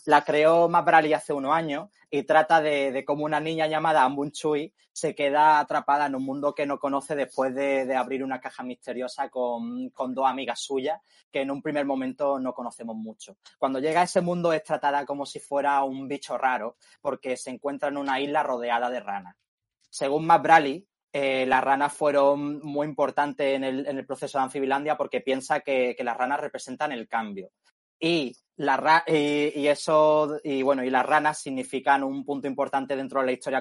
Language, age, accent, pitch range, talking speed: Spanish, 20-39, Spanish, 130-150 Hz, 195 wpm